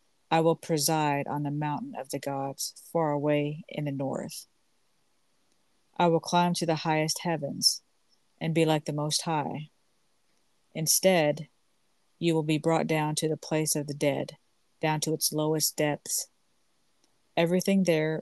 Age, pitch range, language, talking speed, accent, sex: 40-59, 150-165 Hz, English, 150 wpm, American, female